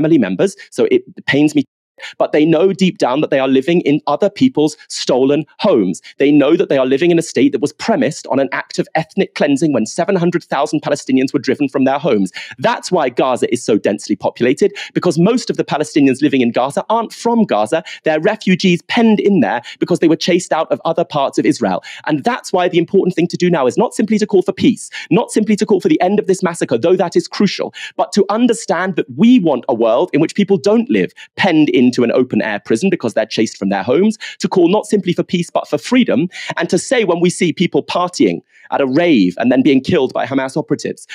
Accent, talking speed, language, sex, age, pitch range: British, 230 wpm, English, male, 30-49, 150-210 Hz